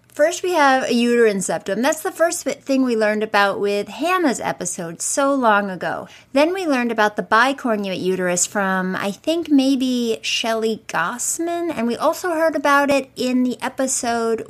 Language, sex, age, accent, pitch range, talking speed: English, female, 30-49, American, 205-275 Hz, 170 wpm